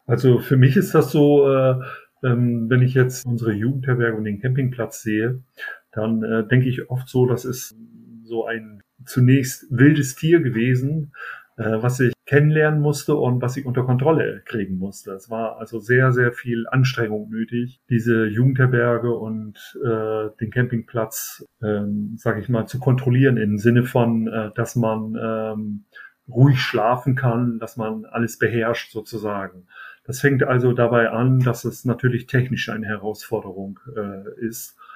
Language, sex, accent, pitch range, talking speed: German, male, German, 110-125 Hz, 140 wpm